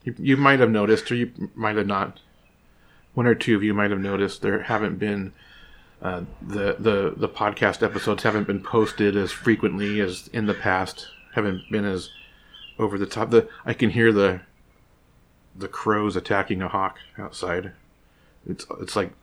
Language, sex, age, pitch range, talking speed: English, male, 30-49, 100-125 Hz, 175 wpm